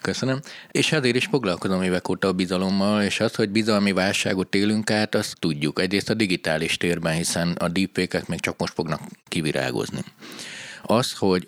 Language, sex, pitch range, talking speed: Hungarian, male, 90-115 Hz, 165 wpm